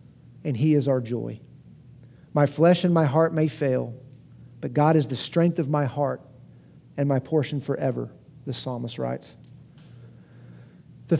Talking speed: 150 wpm